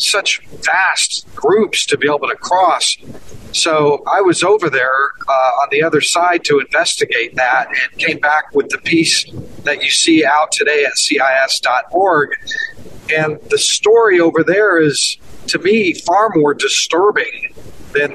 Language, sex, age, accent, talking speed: English, male, 50-69, American, 150 wpm